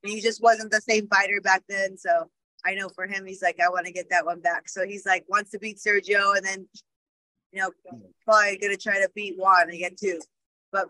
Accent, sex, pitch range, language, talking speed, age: American, female, 185-220 Hz, English, 235 wpm, 20-39